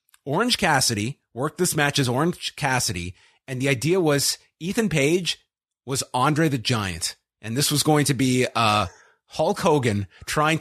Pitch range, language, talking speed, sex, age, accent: 125-165 Hz, English, 160 wpm, male, 30-49, American